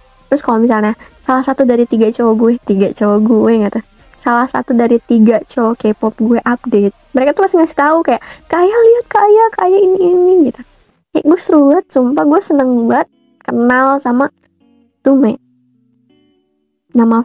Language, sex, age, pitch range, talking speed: Indonesian, female, 20-39, 225-290 Hz, 155 wpm